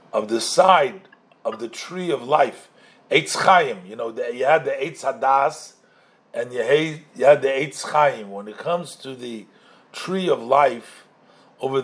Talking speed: 160 wpm